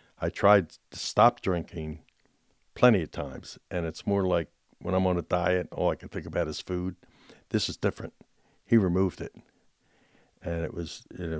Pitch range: 85-105 Hz